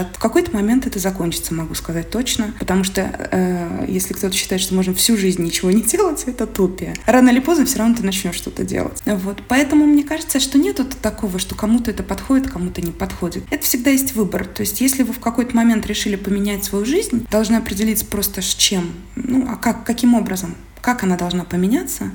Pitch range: 190-230 Hz